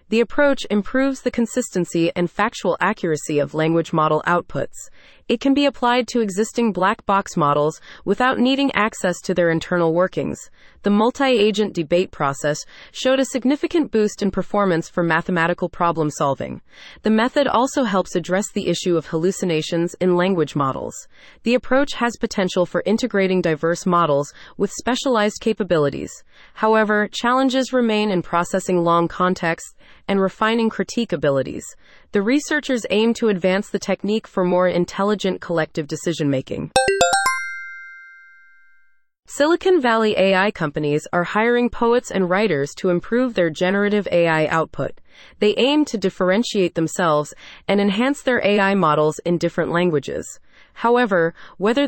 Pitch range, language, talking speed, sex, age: 175-225 Hz, English, 135 wpm, female, 30-49